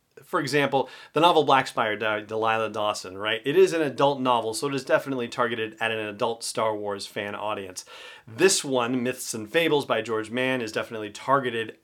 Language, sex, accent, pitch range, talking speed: English, male, American, 110-155 Hz, 195 wpm